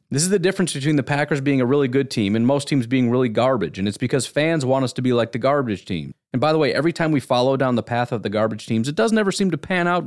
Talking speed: 310 wpm